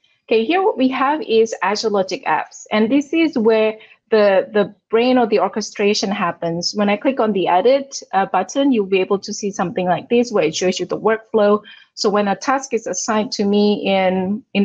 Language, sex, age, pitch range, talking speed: English, female, 20-39, 185-235 Hz, 215 wpm